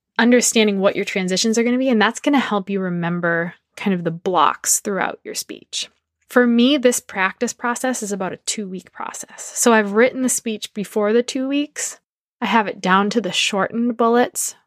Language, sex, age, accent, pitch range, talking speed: English, female, 20-39, American, 195-240 Hz, 200 wpm